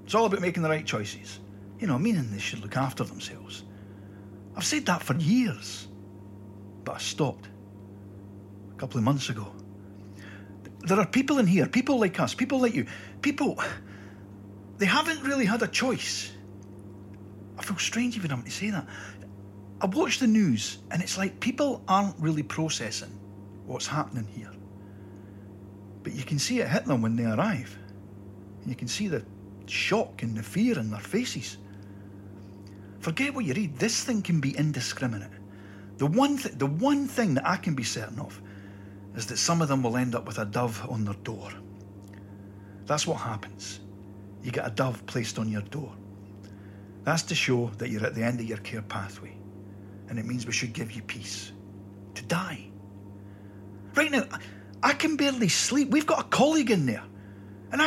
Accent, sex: British, male